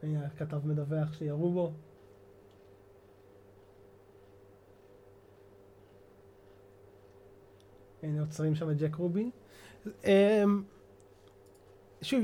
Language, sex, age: Hebrew, male, 20-39